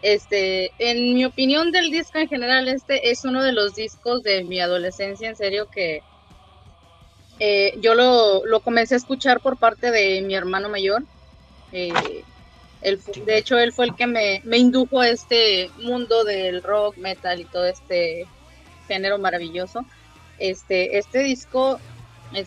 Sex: female